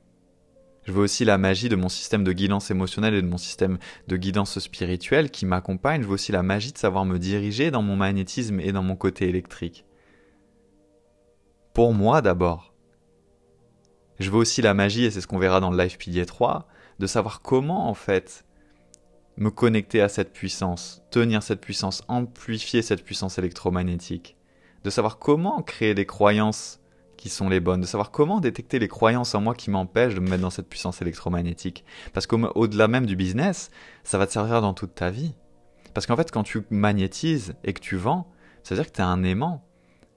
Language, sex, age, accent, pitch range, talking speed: French, male, 20-39, French, 90-115 Hz, 195 wpm